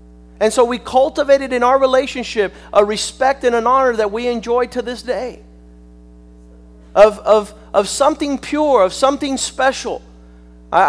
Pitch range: 170-250 Hz